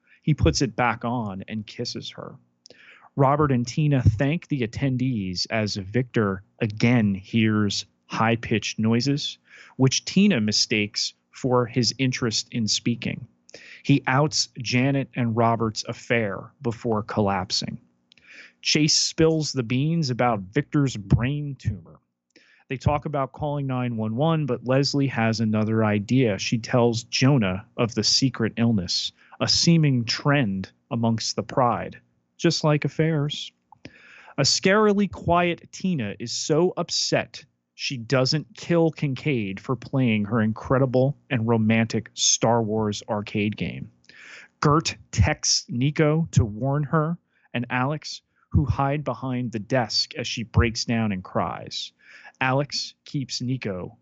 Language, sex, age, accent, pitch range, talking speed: English, male, 30-49, American, 110-140 Hz, 125 wpm